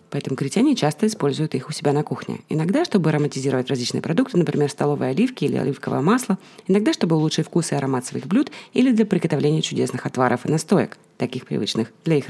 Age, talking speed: 30-49, 190 wpm